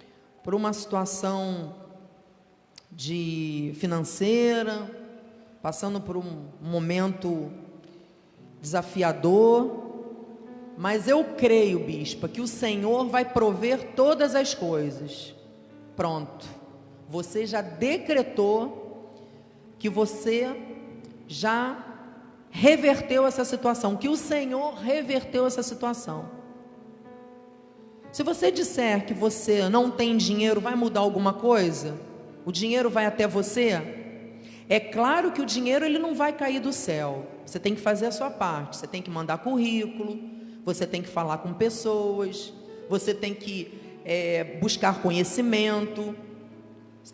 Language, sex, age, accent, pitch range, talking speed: Portuguese, female, 40-59, Brazilian, 180-235 Hz, 115 wpm